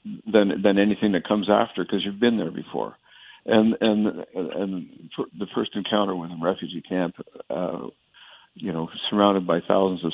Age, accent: 60-79, American